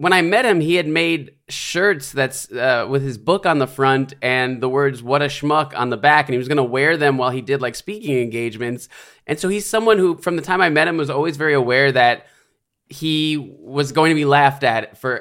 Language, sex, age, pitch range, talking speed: English, male, 20-39, 125-155 Hz, 240 wpm